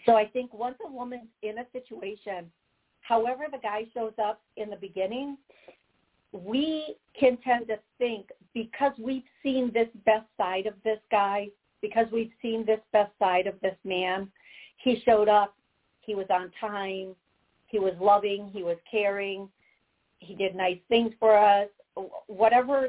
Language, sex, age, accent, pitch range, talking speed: English, female, 50-69, American, 195-230 Hz, 155 wpm